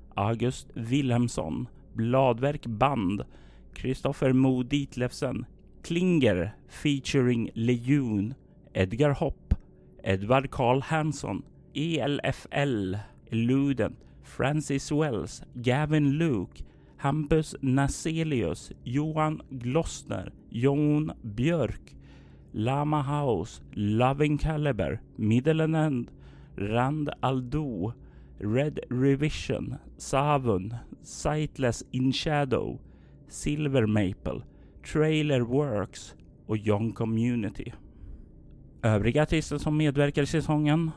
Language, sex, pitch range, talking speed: Swedish, male, 105-145 Hz, 75 wpm